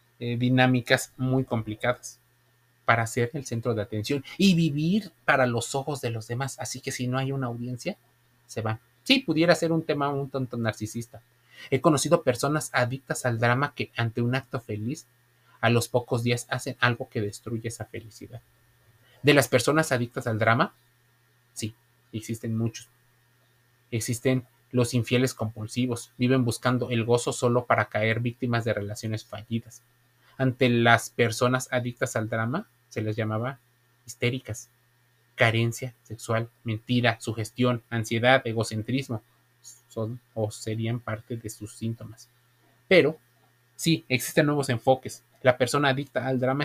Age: 30-49